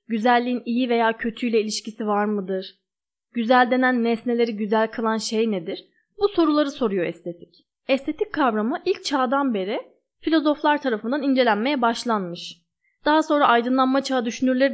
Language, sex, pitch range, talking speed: Turkish, female, 215-295 Hz, 130 wpm